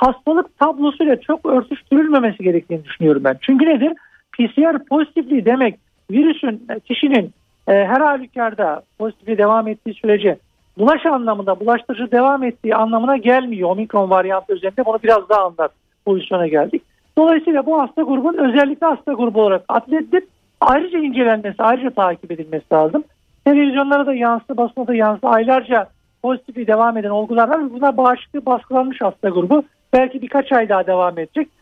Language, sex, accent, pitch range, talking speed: Turkish, male, native, 215-290 Hz, 140 wpm